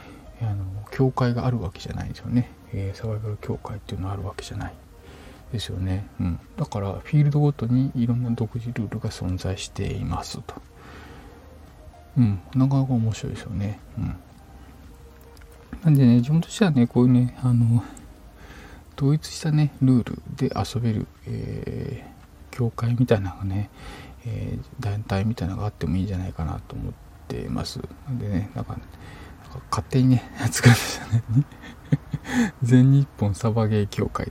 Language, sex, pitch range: Japanese, male, 95-130 Hz